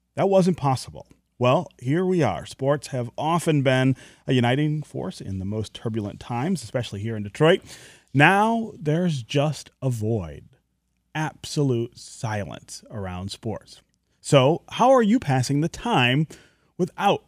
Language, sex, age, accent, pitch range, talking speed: English, male, 30-49, American, 115-150 Hz, 140 wpm